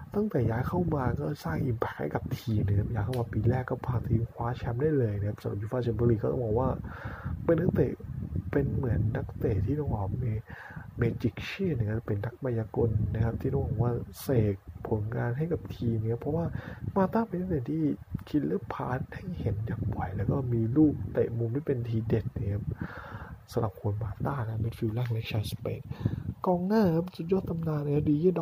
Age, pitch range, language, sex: 20-39, 110-150 Hz, Thai, male